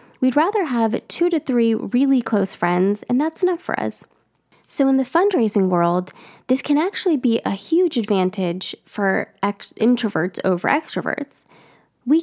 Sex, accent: female, American